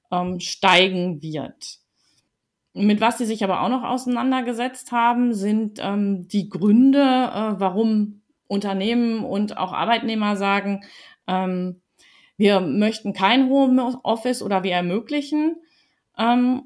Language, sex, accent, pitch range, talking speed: German, female, German, 190-240 Hz, 110 wpm